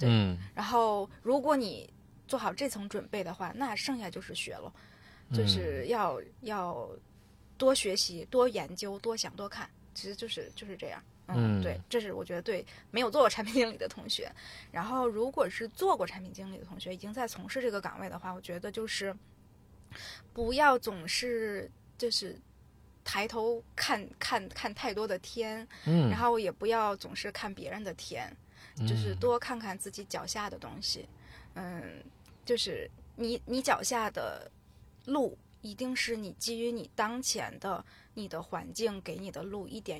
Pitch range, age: 185-235 Hz, 20-39